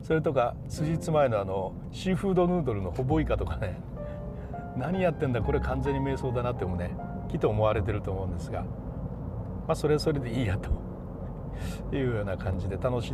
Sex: male